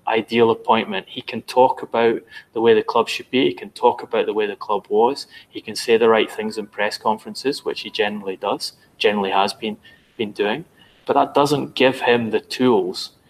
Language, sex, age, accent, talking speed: English, male, 20-39, British, 210 wpm